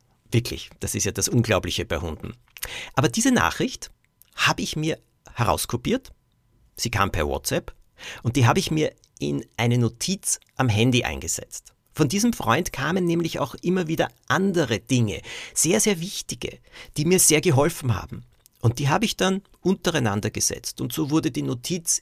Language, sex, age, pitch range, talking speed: German, male, 50-69, 110-140 Hz, 165 wpm